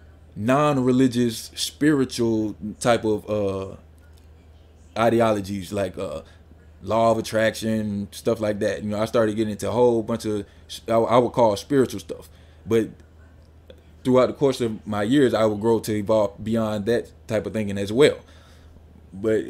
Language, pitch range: English, 95-120 Hz